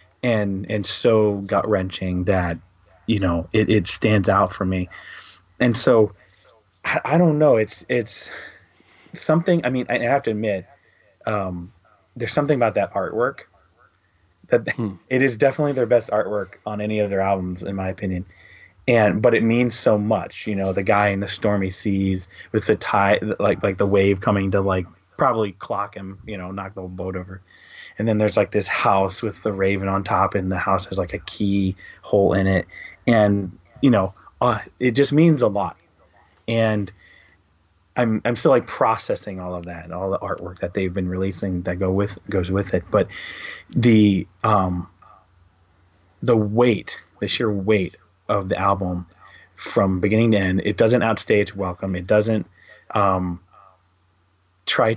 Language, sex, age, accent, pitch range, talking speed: English, male, 30-49, American, 95-110 Hz, 175 wpm